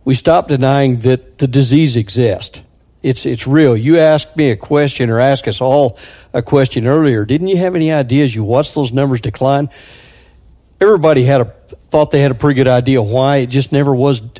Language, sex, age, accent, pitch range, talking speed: English, male, 60-79, American, 120-140 Hz, 195 wpm